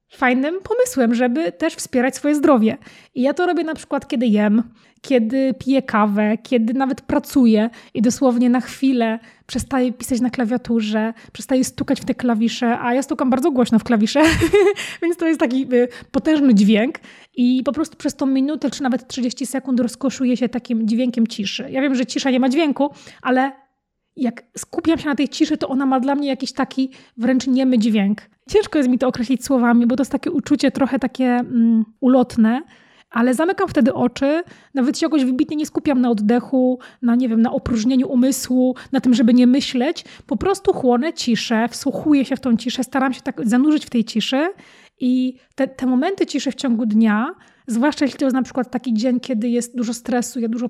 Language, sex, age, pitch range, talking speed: Polish, female, 20-39, 235-275 Hz, 190 wpm